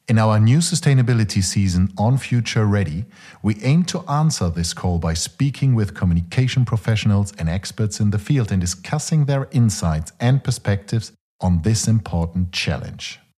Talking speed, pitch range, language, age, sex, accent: 155 wpm, 90-120 Hz, English, 50-69, male, German